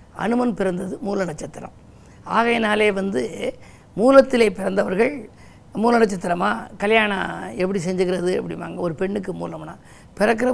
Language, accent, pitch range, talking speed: Tamil, native, 195-235 Hz, 100 wpm